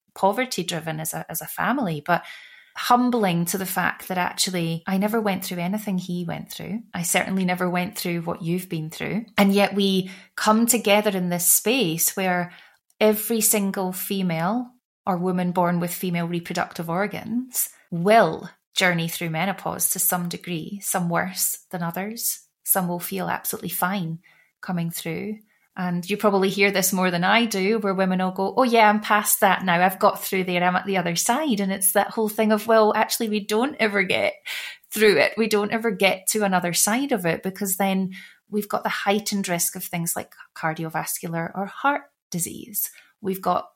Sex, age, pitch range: female, 20-39, 175-215 Hz